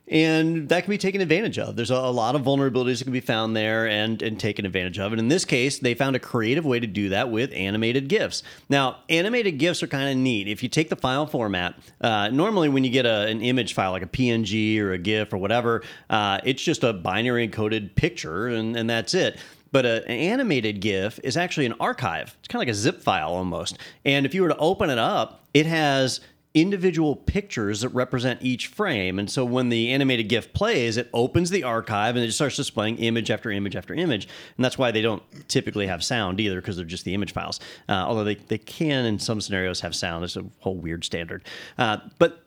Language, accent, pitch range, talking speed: English, American, 110-150 Hz, 230 wpm